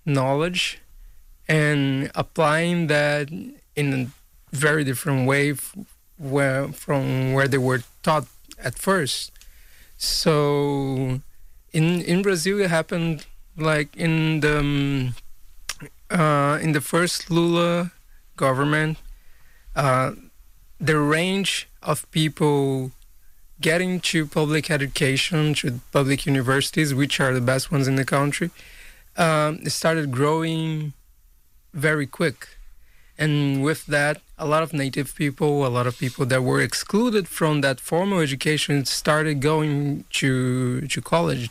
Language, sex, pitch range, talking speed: English, male, 135-160 Hz, 120 wpm